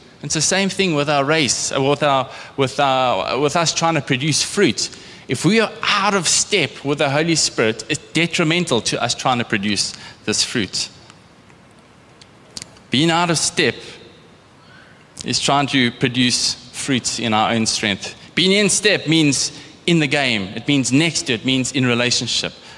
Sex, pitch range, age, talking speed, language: male, 130-170 Hz, 20-39, 165 wpm, English